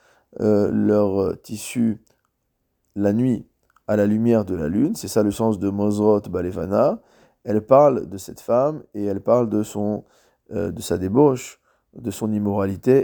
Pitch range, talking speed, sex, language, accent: 105-125 Hz, 165 wpm, male, French, French